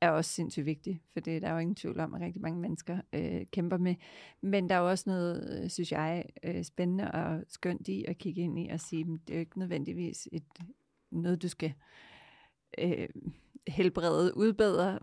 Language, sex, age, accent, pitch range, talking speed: Danish, female, 40-59, native, 165-200 Hz, 205 wpm